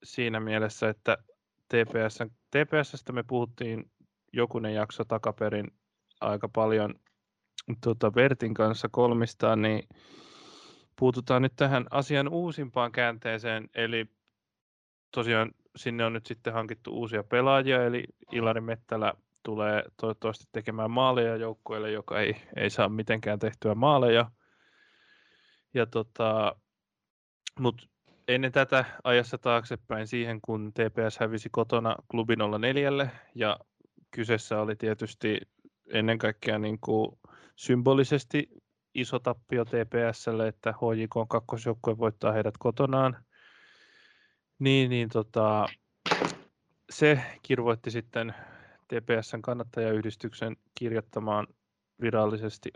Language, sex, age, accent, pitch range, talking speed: Finnish, male, 20-39, native, 110-130 Hz, 100 wpm